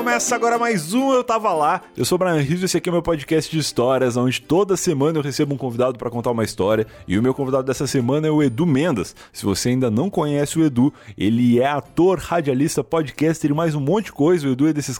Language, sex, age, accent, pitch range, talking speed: Portuguese, male, 20-39, Brazilian, 120-155 Hz, 255 wpm